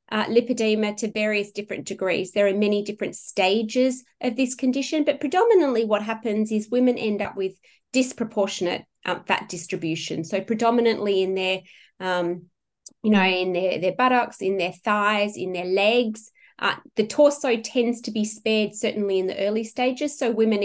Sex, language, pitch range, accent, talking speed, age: female, English, 200-250 Hz, Australian, 170 wpm, 20-39